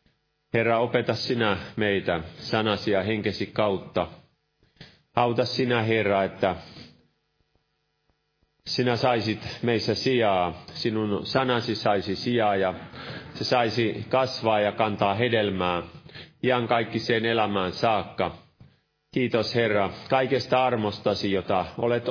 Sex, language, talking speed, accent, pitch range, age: male, Finnish, 100 wpm, native, 105-130 Hz, 30-49